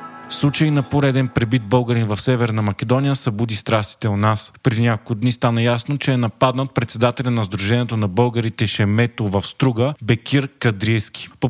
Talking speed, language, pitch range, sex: 160 wpm, Bulgarian, 110-130 Hz, male